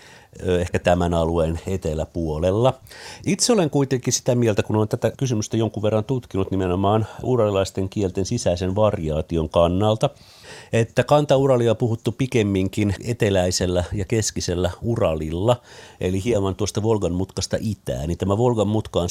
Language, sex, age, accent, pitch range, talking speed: Finnish, male, 50-69, native, 80-105 Hz, 130 wpm